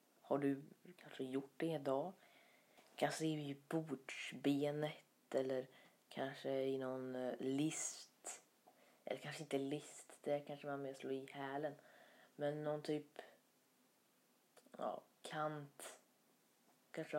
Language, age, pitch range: Swedish, 30-49, 135-160 Hz